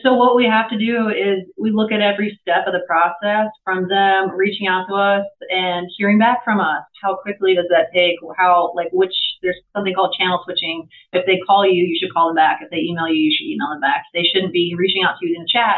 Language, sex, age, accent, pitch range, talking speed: English, female, 30-49, American, 175-210 Hz, 255 wpm